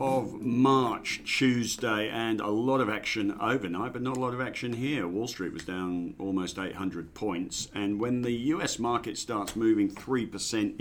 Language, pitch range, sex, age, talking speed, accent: English, 95-110 Hz, male, 50-69, 170 wpm, British